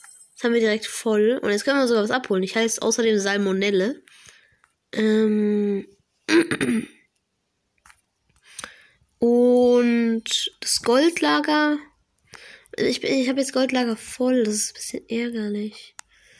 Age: 20-39